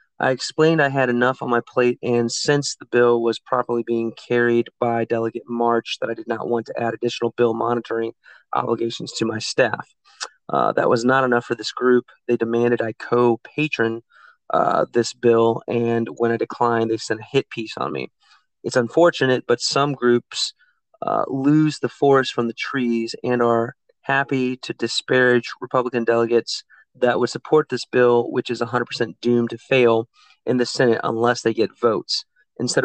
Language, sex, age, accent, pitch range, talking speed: English, male, 30-49, American, 115-125 Hz, 175 wpm